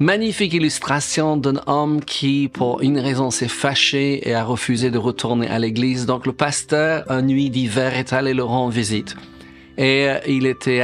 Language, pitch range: French, 125-155 Hz